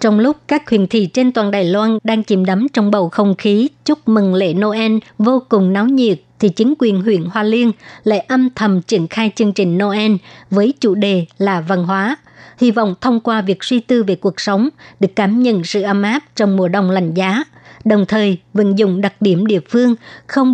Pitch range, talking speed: 195-225 Hz, 215 wpm